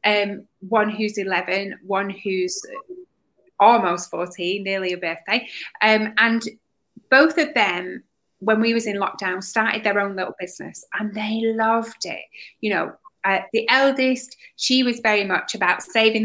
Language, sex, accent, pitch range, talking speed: English, female, British, 195-230 Hz, 150 wpm